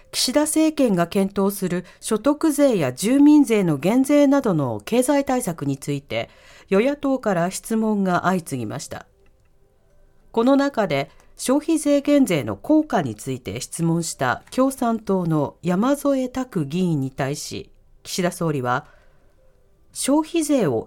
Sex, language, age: female, Japanese, 40-59